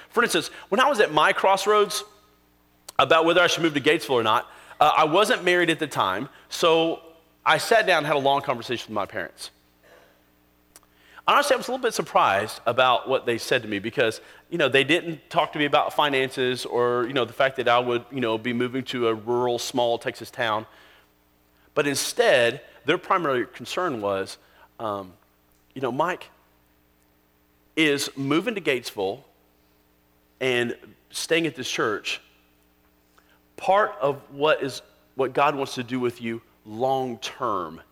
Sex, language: male, English